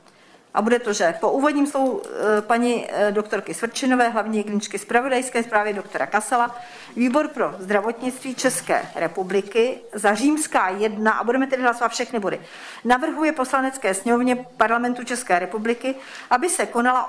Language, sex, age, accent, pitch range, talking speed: Czech, female, 50-69, native, 200-255 Hz, 135 wpm